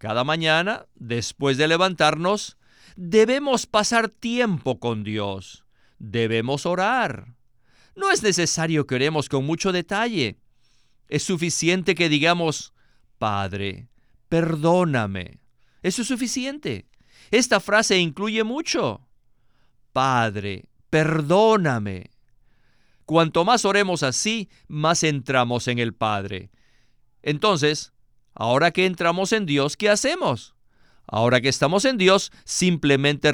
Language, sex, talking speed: Spanish, male, 105 wpm